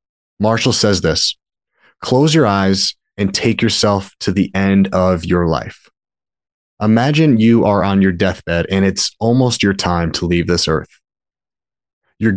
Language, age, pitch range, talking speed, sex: English, 30-49, 90-115 Hz, 150 wpm, male